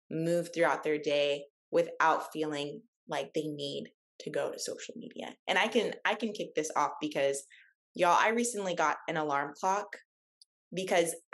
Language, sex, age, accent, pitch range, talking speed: English, female, 20-39, American, 165-225 Hz, 165 wpm